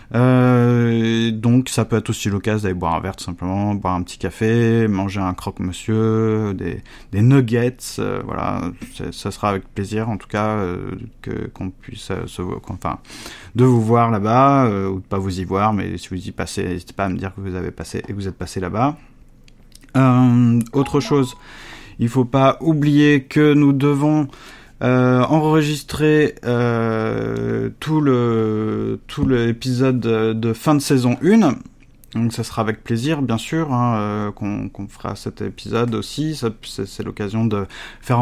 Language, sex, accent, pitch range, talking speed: French, male, French, 105-130 Hz, 175 wpm